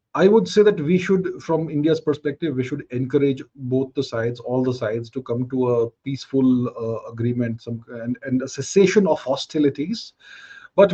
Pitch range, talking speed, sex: 130-175 Hz, 180 wpm, male